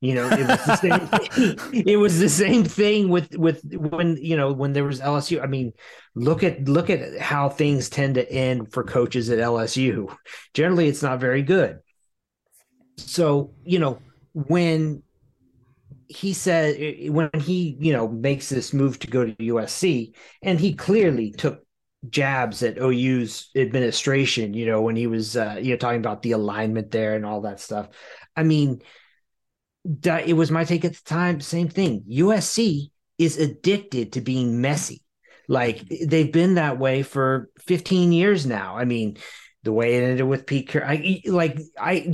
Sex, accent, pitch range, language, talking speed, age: male, American, 125-170 Hz, English, 165 wpm, 30-49